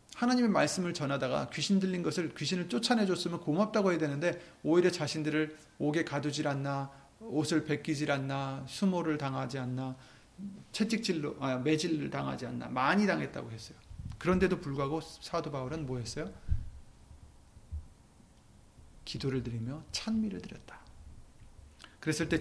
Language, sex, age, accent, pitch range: Korean, male, 30-49, native, 135-180 Hz